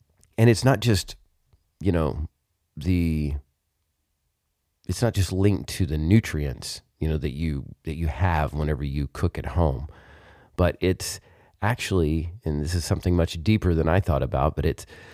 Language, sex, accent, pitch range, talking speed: English, male, American, 80-95 Hz, 165 wpm